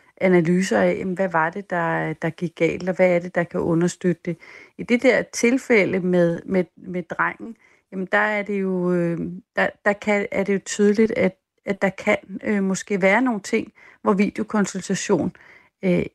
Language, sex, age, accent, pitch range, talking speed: Danish, female, 40-59, native, 180-210 Hz, 180 wpm